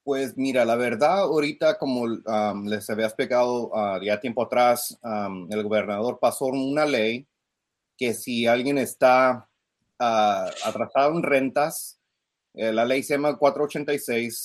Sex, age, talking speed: male, 30-49, 140 wpm